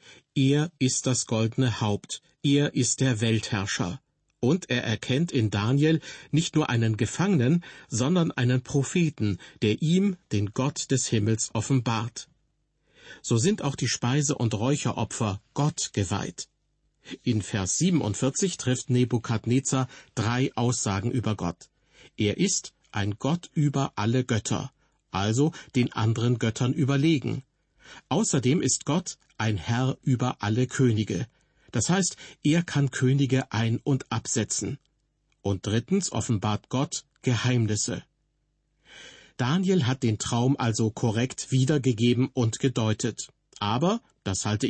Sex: male